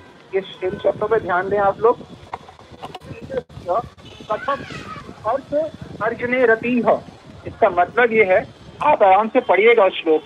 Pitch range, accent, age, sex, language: 220-275 Hz, native, 50-69, male, Hindi